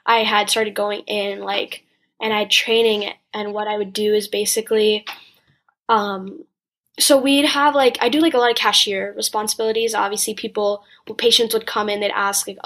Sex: female